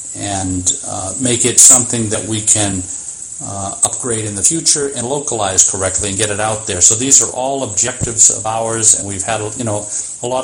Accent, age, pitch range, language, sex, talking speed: American, 50-69, 100-120 Hz, English, male, 200 wpm